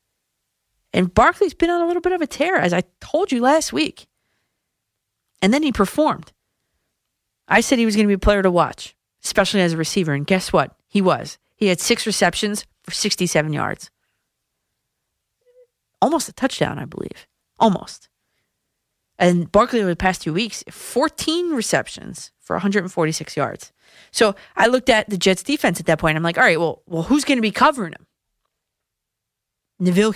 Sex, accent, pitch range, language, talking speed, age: female, American, 175-255 Hz, English, 175 wpm, 30-49